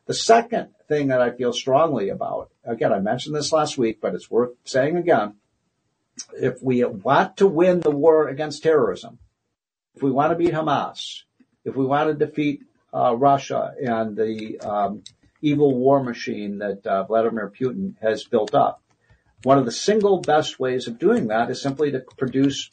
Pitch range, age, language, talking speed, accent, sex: 120-150 Hz, 60-79, English, 175 wpm, American, male